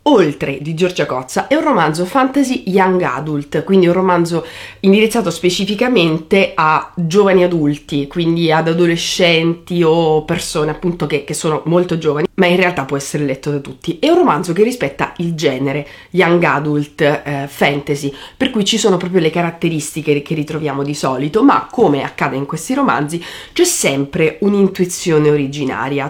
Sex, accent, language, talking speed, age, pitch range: female, native, Italian, 160 wpm, 30-49, 155-200 Hz